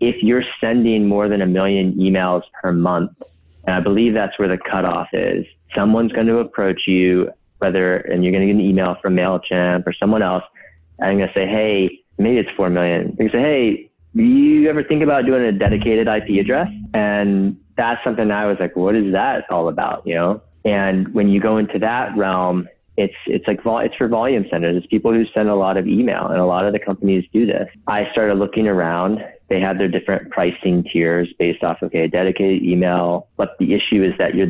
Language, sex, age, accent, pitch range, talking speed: English, male, 30-49, American, 90-105 Hz, 215 wpm